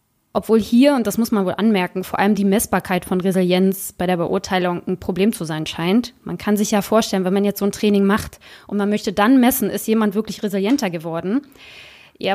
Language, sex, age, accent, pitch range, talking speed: German, female, 20-39, German, 190-230 Hz, 220 wpm